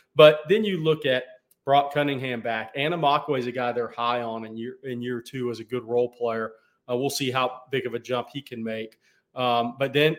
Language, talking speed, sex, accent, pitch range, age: English, 235 wpm, male, American, 120-145 Hz, 30-49